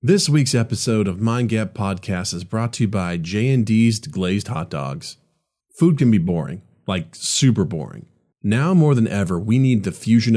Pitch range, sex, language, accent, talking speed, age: 95-130 Hz, male, English, American, 180 wpm, 40-59